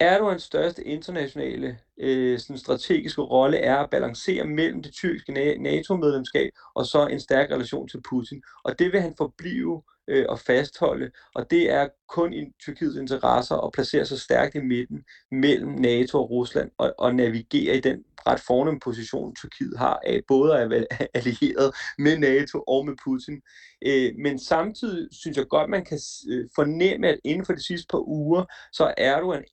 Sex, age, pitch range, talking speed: male, 30-49, 135-175 Hz, 170 wpm